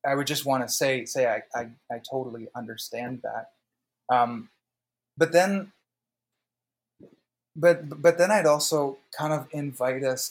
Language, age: English, 30-49